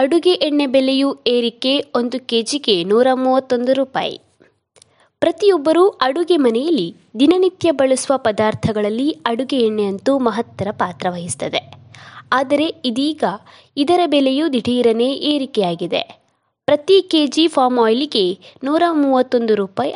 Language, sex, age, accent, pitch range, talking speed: Kannada, female, 20-39, native, 235-305 Hz, 95 wpm